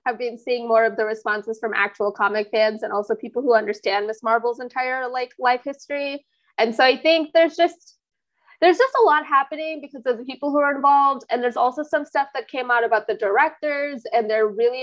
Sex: female